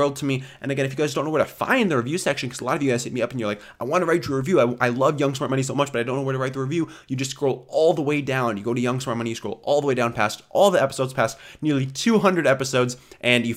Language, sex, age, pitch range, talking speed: English, male, 20-39, 115-145 Hz, 350 wpm